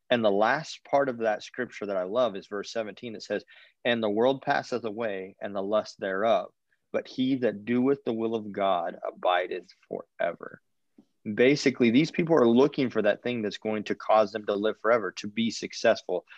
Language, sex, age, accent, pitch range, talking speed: English, male, 30-49, American, 105-125 Hz, 195 wpm